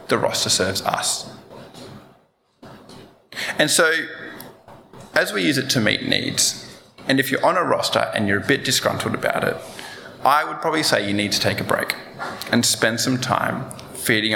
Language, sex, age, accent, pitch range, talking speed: English, male, 20-39, Australian, 100-125 Hz, 170 wpm